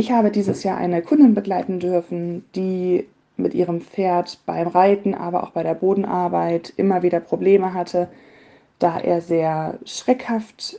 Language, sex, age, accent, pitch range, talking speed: German, female, 20-39, German, 170-195 Hz, 150 wpm